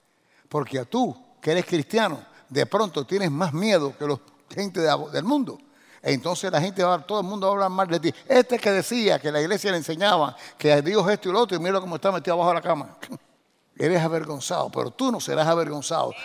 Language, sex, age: English, male, 60-79